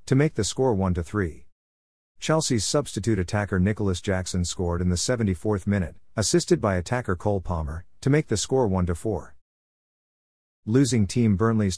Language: English